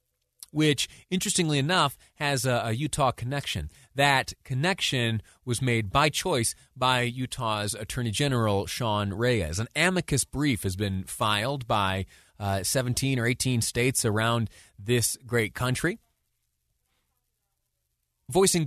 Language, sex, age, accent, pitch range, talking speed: English, male, 30-49, American, 100-130 Hz, 120 wpm